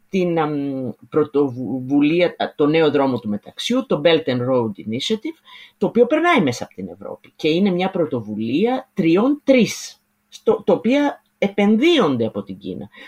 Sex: female